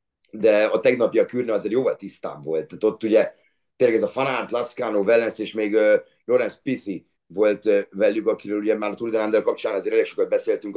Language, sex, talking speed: Hungarian, male, 195 wpm